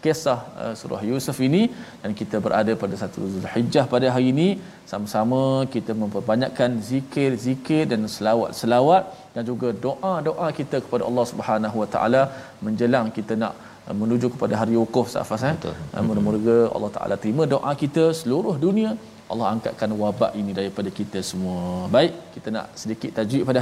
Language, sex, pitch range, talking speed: Malayalam, male, 110-135 Hz, 155 wpm